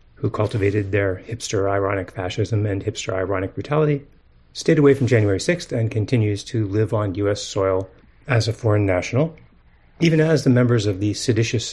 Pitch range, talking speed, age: 95-125 Hz, 160 wpm, 30-49